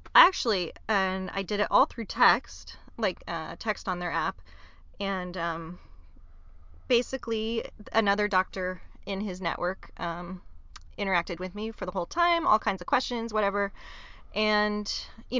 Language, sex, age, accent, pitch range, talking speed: English, female, 30-49, American, 170-225 Hz, 145 wpm